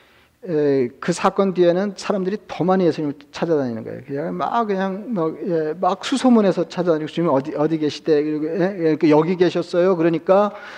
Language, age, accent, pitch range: Korean, 40-59, native, 155-180 Hz